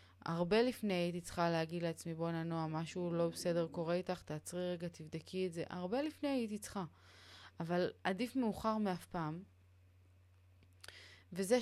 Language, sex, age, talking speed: Hebrew, female, 20-39, 145 wpm